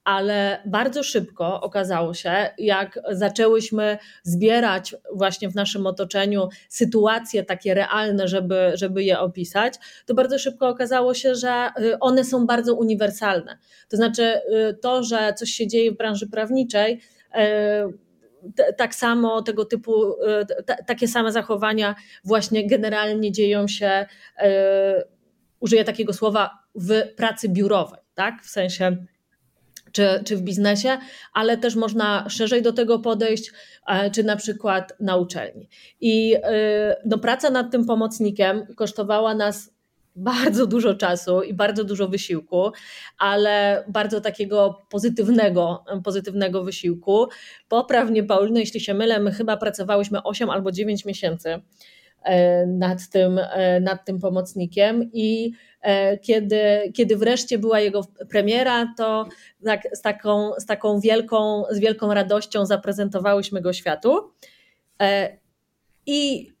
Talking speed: 120 wpm